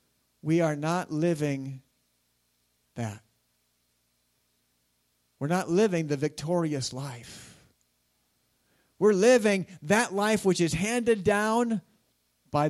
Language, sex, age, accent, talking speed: English, male, 50-69, American, 95 wpm